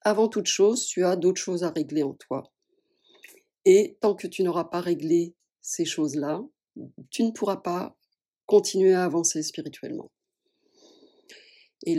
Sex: female